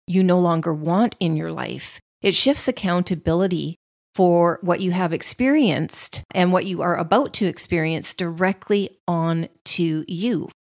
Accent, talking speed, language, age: American, 145 wpm, English, 40-59